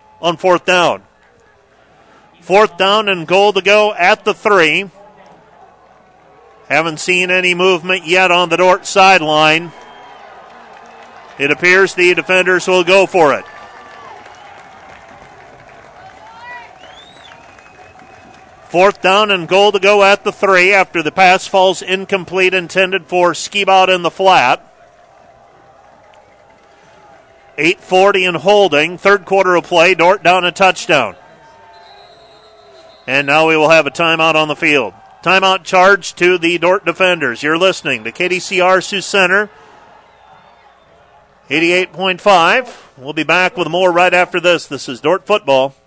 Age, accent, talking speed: 40-59, American, 125 wpm